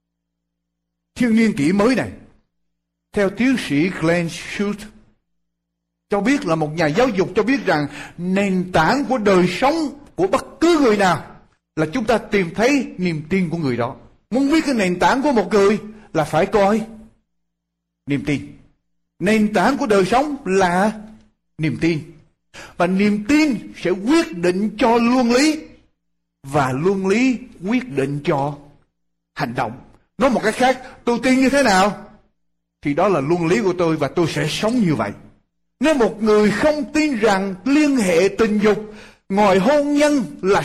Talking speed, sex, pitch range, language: 170 wpm, male, 160-225 Hz, Vietnamese